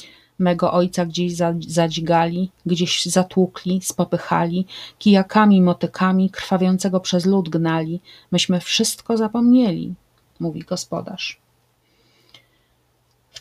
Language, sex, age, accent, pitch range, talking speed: Polish, female, 30-49, native, 175-200 Hz, 85 wpm